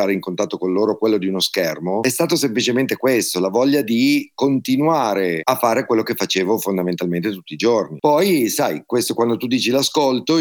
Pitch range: 100-125 Hz